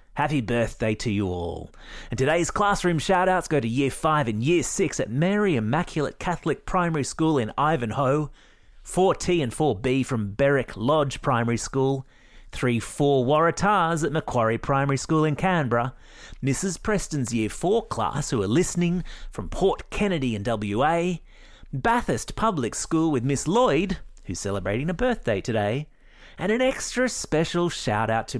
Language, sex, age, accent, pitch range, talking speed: English, male, 30-49, Australian, 115-165 Hz, 150 wpm